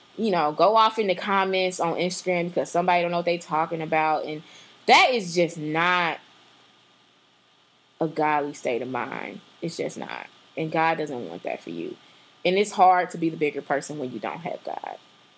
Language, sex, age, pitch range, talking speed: English, female, 20-39, 155-200 Hz, 200 wpm